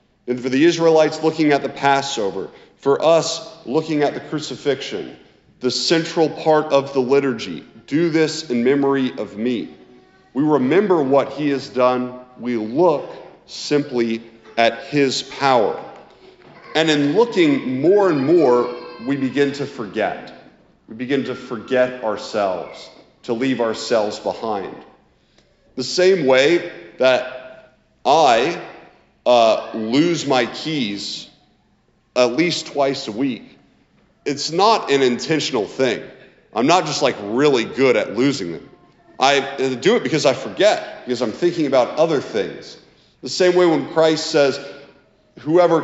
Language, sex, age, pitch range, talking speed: English, male, 40-59, 120-155 Hz, 135 wpm